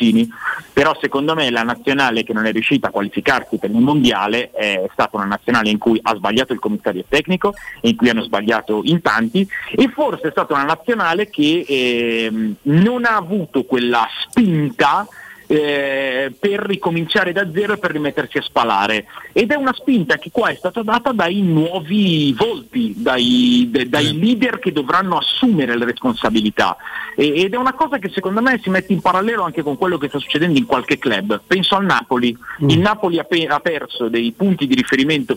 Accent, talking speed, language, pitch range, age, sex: native, 175 wpm, Italian, 140-210 Hz, 40-59, male